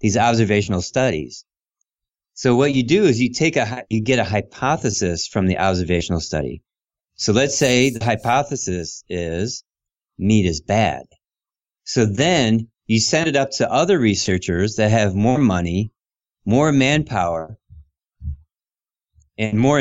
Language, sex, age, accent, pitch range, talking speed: English, male, 30-49, American, 95-125 Hz, 135 wpm